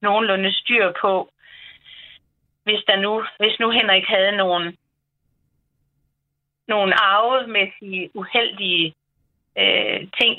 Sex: female